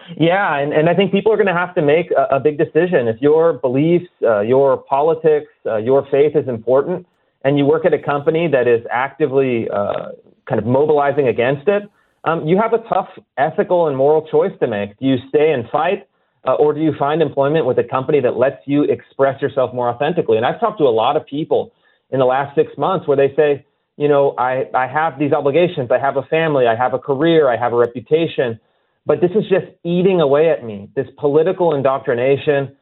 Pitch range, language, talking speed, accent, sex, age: 135-170 Hz, English, 220 wpm, American, male, 30-49